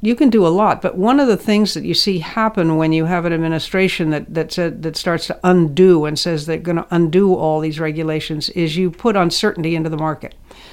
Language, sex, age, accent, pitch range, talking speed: English, female, 60-79, American, 155-180 Hz, 235 wpm